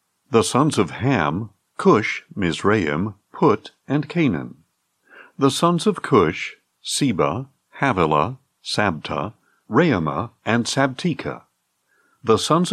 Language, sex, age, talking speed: English, male, 60-79, 100 wpm